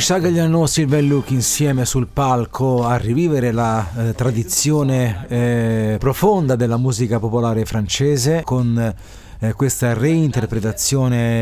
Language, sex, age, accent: Italian, male, 30-49, native